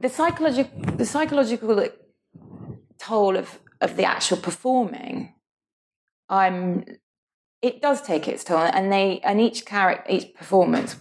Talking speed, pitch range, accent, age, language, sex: 125 wpm, 145-225 Hz, British, 30-49, English, female